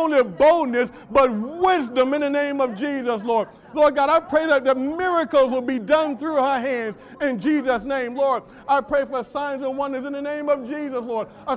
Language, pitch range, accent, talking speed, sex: English, 255-300 Hz, American, 210 wpm, male